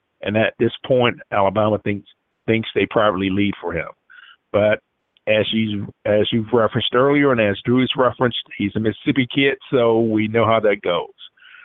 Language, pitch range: English, 100-115 Hz